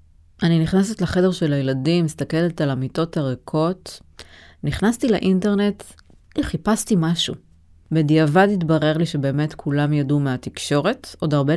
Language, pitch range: Hebrew, 140-180 Hz